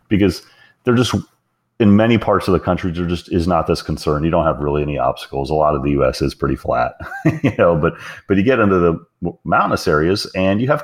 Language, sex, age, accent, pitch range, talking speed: English, male, 30-49, American, 75-90 Hz, 235 wpm